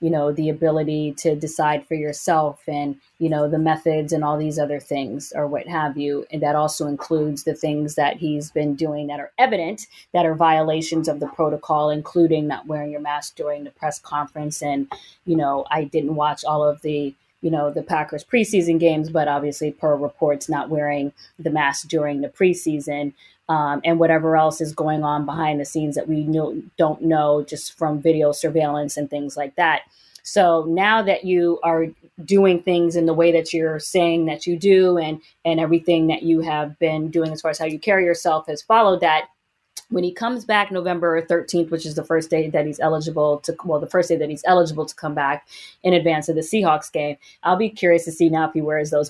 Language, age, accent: English, 20-39, American